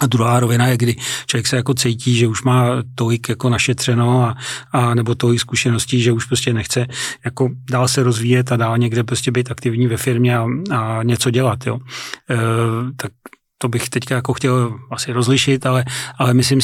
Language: Czech